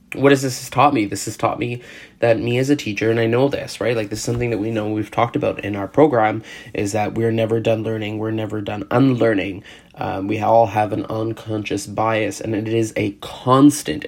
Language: English